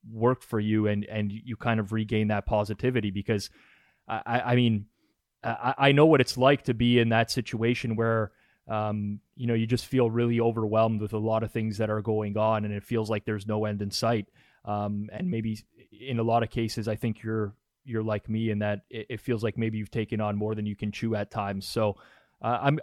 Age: 20-39